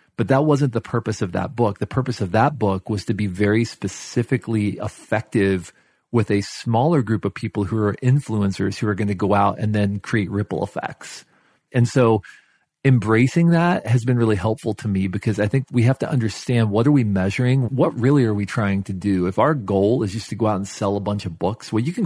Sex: male